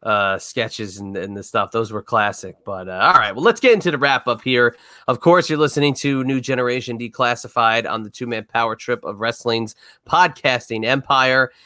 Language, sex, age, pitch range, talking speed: English, male, 30-49, 115-135 Hz, 200 wpm